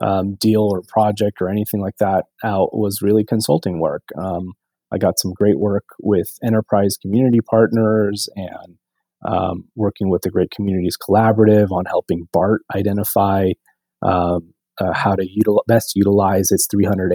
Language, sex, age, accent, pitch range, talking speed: English, male, 30-49, American, 90-105 Hz, 150 wpm